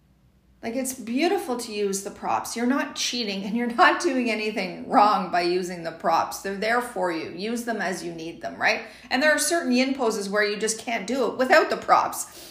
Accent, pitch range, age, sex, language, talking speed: American, 220-300 Hz, 40-59, female, English, 220 wpm